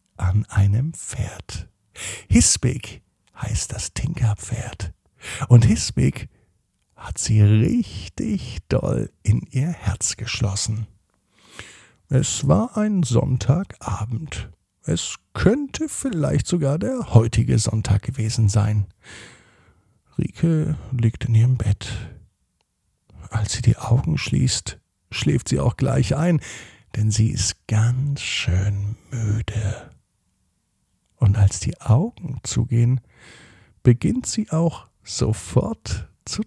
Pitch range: 100-130 Hz